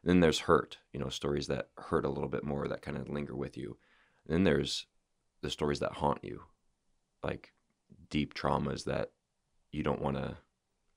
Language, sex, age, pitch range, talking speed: English, male, 20-39, 70-80 Hz, 180 wpm